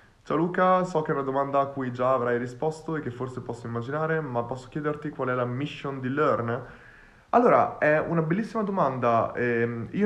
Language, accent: Italian, native